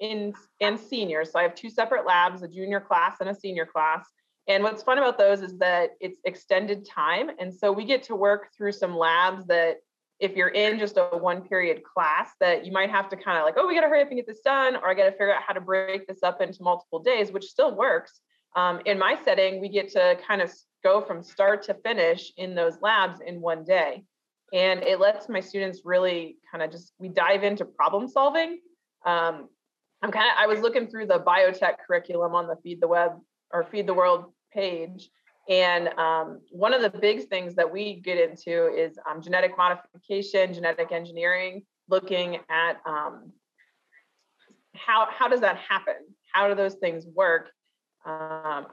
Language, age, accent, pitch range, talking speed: English, 30-49, American, 175-210 Hz, 200 wpm